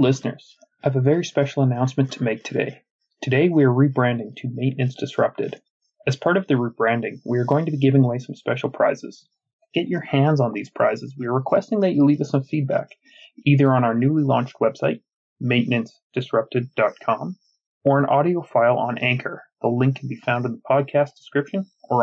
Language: English